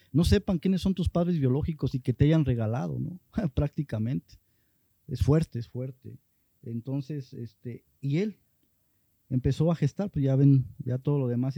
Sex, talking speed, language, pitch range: male, 165 wpm, Spanish, 120-155 Hz